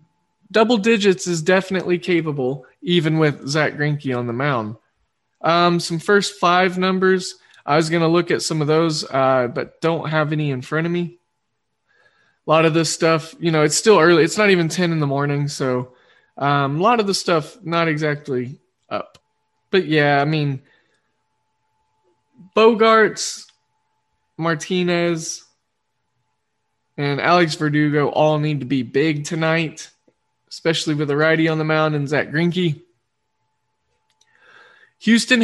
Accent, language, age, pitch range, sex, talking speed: American, English, 20-39, 145-175 Hz, male, 150 wpm